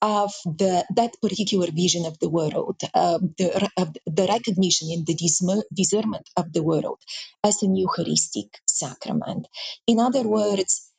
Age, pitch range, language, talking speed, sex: 30-49, 180-210 Hz, English, 130 wpm, female